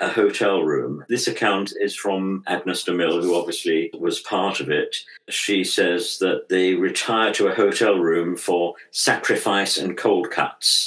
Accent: British